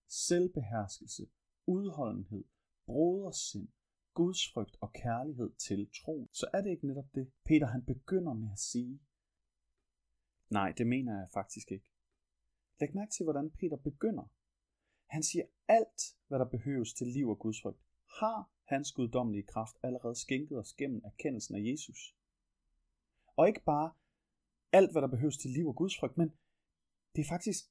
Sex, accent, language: male, native, Danish